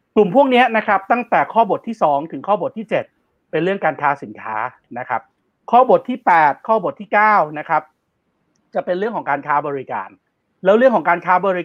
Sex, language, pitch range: male, Thai, 145-190 Hz